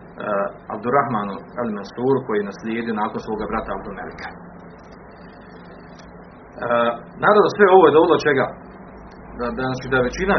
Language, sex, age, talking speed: Croatian, male, 40-59, 120 wpm